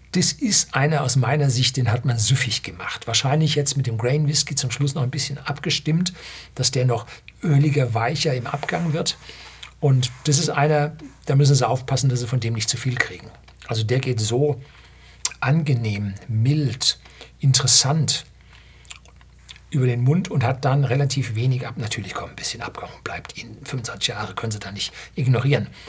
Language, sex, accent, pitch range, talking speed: German, male, German, 115-140 Hz, 180 wpm